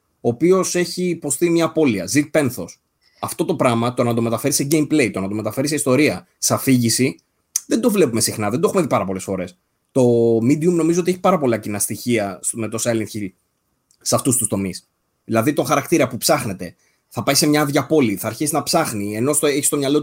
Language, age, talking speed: Greek, 20-39, 215 wpm